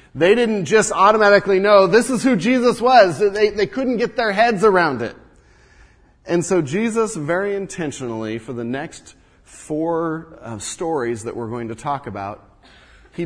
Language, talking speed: English, 165 wpm